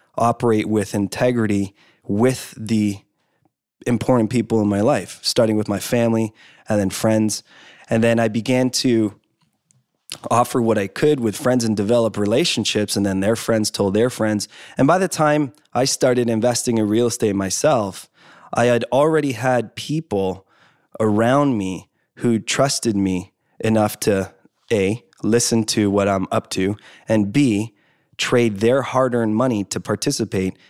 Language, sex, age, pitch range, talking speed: English, male, 20-39, 100-120 Hz, 150 wpm